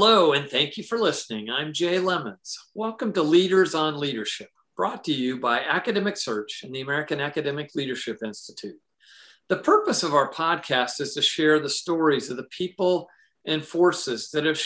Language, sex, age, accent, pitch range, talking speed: English, male, 50-69, American, 135-170 Hz, 175 wpm